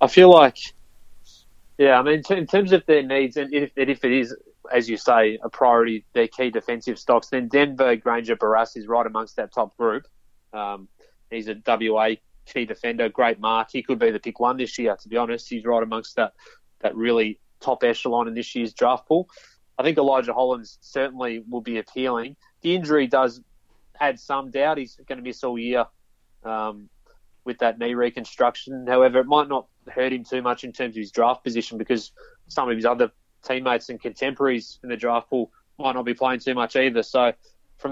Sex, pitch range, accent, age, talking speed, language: male, 115-135 Hz, Australian, 20-39, 200 wpm, English